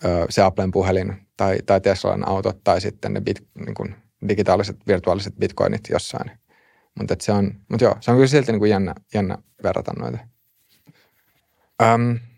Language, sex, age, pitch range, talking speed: Finnish, male, 30-49, 95-110 Hz, 150 wpm